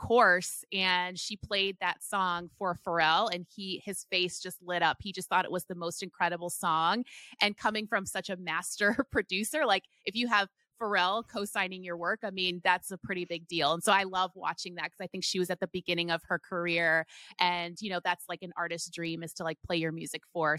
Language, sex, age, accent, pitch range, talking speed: English, female, 20-39, American, 175-205 Hz, 225 wpm